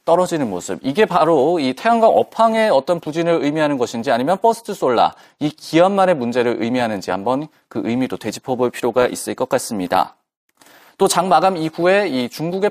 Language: Korean